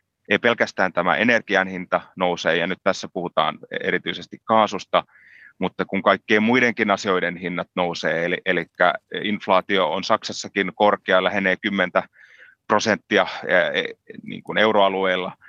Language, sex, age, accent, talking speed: Finnish, male, 30-49, native, 120 wpm